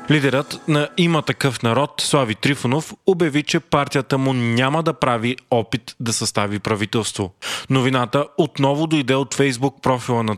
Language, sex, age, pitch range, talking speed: Bulgarian, male, 30-49, 125-155 Hz, 145 wpm